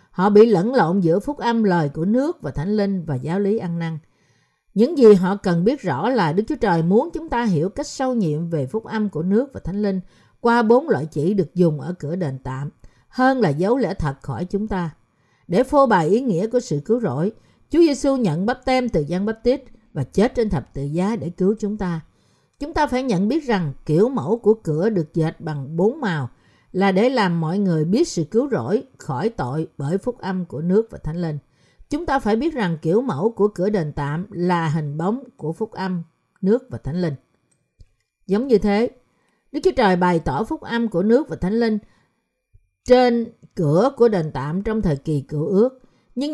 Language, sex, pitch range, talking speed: Vietnamese, female, 160-230 Hz, 220 wpm